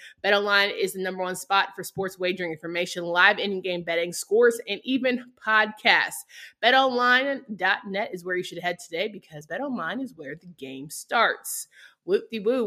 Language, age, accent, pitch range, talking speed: English, 20-39, American, 175-235 Hz, 150 wpm